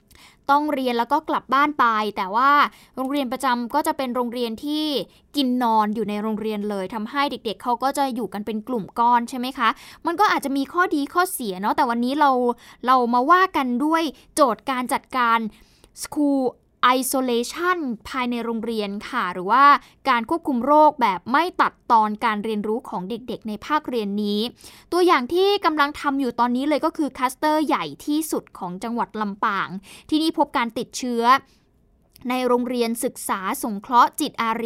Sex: female